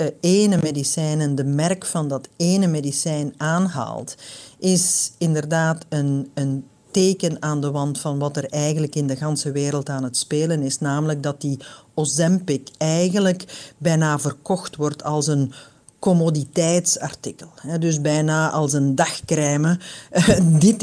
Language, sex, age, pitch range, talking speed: Dutch, female, 50-69, 140-185 Hz, 135 wpm